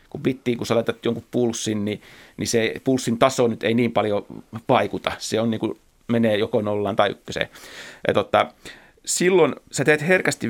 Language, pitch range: Finnish, 110-125 Hz